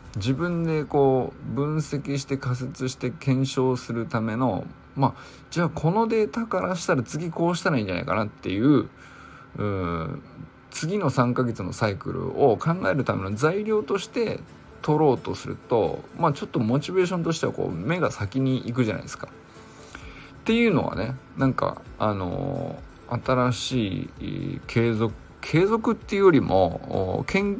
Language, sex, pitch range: Japanese, male, 120-155 Hz